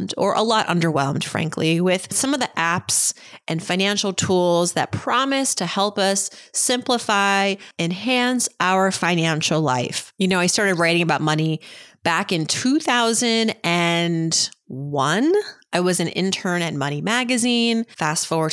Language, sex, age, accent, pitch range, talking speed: English, female, 30-49, American, 160-220 Hz, 135 wpm